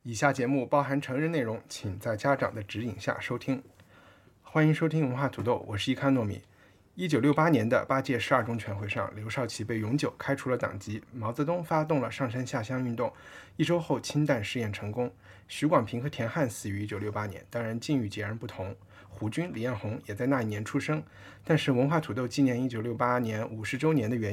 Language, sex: Chinese, male